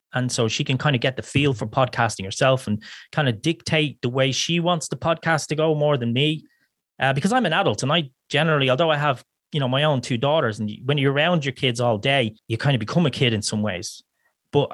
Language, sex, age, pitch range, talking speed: English, male, 30-49, 120-155 Hz, 255 wpm